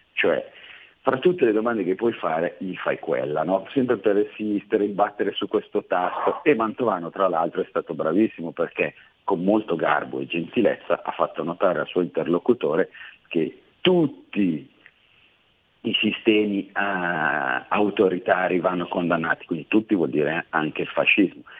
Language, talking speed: Italian, 145 wpm